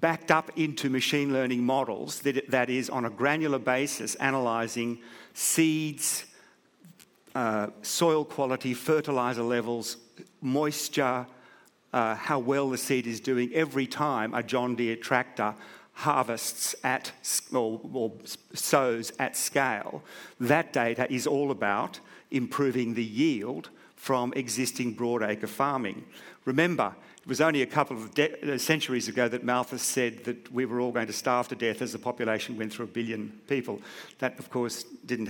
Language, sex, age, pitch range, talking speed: English, male, 50-69, 120-140 Hz, 150 wpm